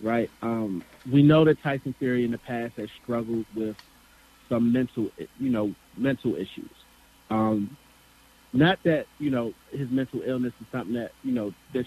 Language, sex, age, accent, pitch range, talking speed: English, male, 30-49, American, 110-130 Hz, 165 wpm